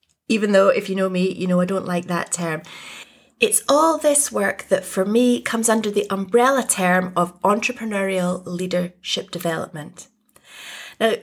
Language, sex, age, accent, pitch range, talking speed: English, female, 30-49, British, 175-225 Hz, 160 wpm